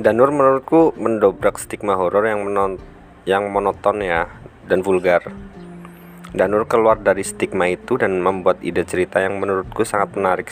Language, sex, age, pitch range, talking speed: Indonesian, male, 20-39, 90-105 Hz, 145 wpm